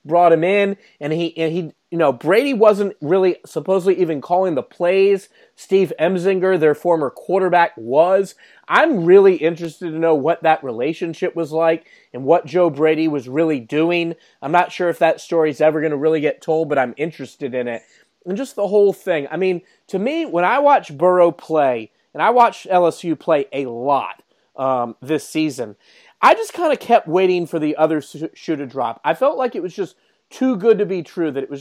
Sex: male